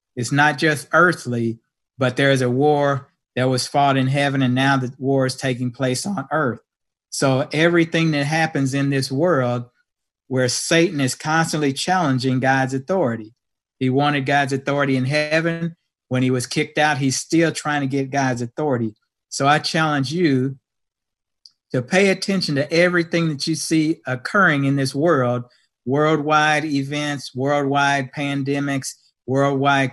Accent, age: American, 50-69